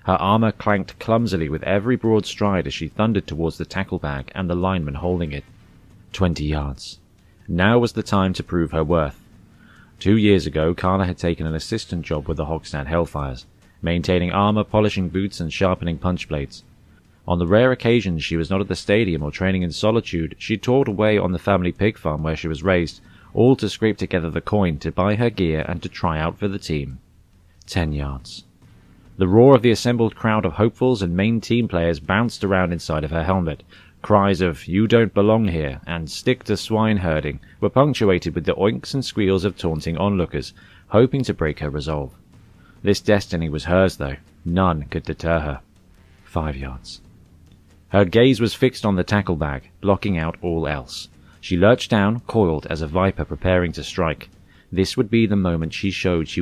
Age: 30-49